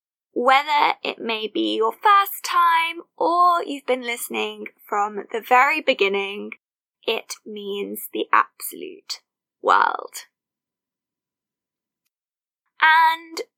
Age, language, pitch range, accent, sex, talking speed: 10-29, English, 250-420 Hz, British, female, 95 wpm